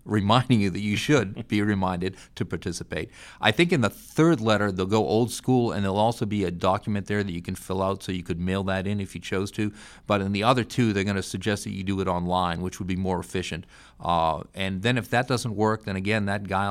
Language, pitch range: English, 95-110 Hz